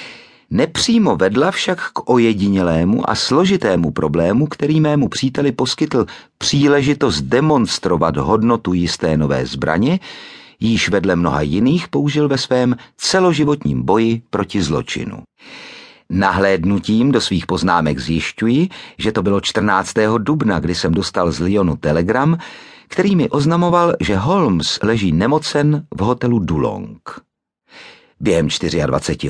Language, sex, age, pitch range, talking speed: Czech, male, 50-69, 85-140 Hz, 115 wpm